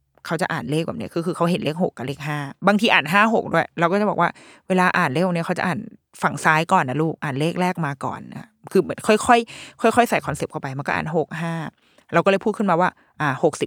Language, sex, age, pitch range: Thai, female, 20-39, 160-215 Hz